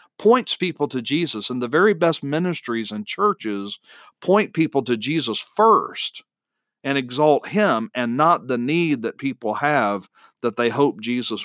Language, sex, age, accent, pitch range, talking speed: English, male, 40-59, American, 120-155 Hz, 155 wpm